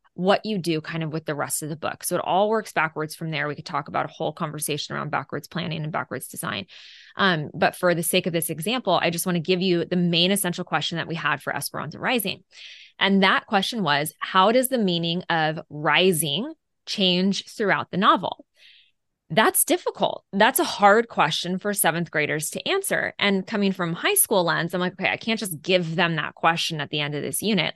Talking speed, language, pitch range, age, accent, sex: 220 wpm, English, 160-210 Hz, 20-39, American, female